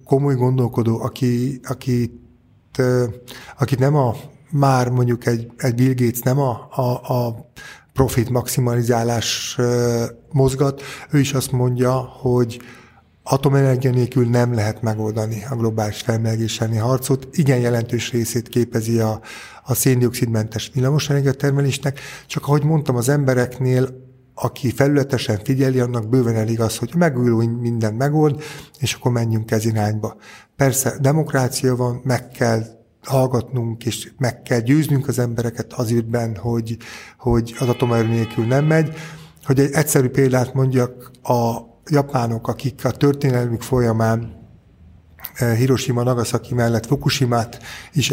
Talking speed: 120 wpm